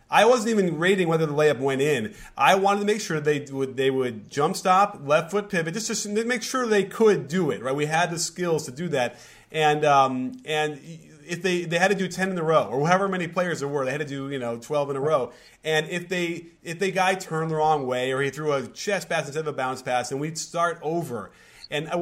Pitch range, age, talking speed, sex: 150-190 Hz, 30-49, 260 wpm, male